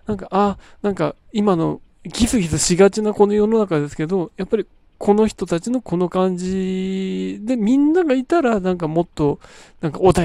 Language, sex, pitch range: Japanese, male, 160-235 Hz